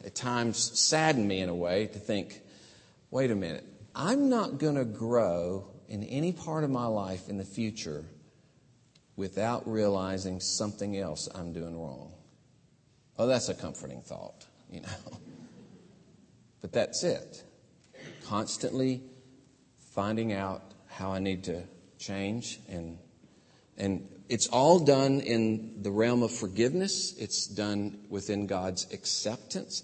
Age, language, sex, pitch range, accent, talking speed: 40-59, English, male, 95-130 Hz, American, 135 wpm